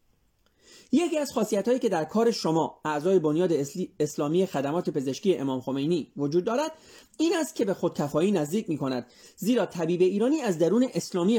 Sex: male